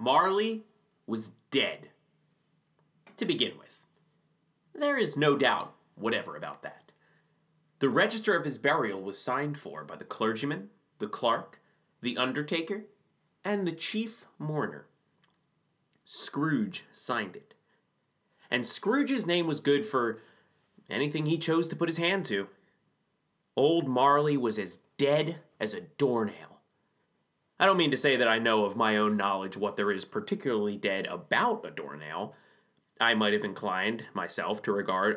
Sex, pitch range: male, 110-185 Hz